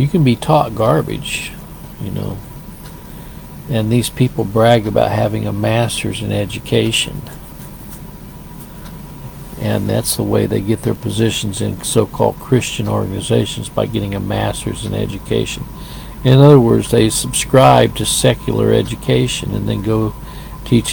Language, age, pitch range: English, 60-79, 110-135 Hz